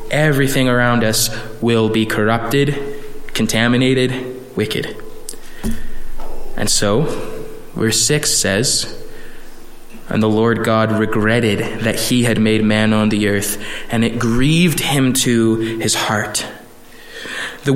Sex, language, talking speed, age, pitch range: male, English, 115 wpm, 20-39, 110-140 Hz